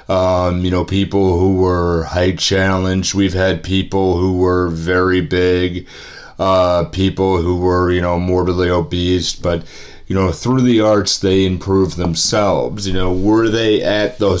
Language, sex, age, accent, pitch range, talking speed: English, male, 30-49, American, 90-110 Hz, 160 wpm